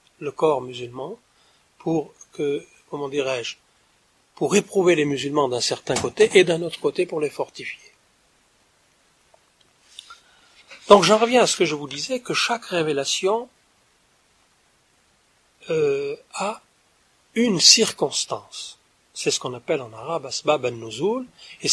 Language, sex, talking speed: French, male, 135 wpm